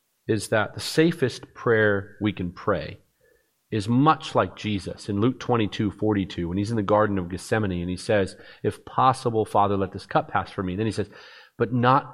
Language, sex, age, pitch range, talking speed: English, male, 40-59, 100-140 Hz, 195 wpm